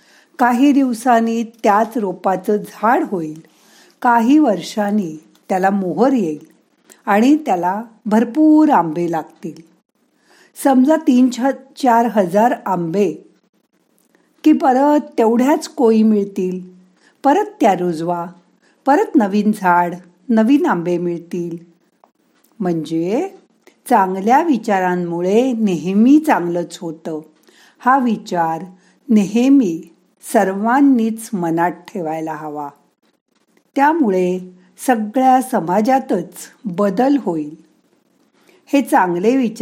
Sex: female